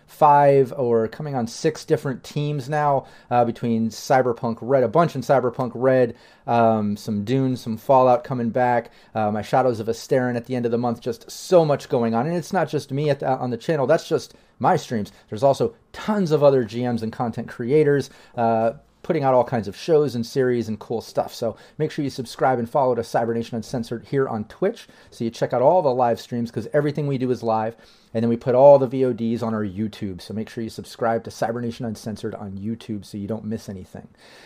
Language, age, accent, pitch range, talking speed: English, 30-49, American, 115-135 Hz, 220 wpm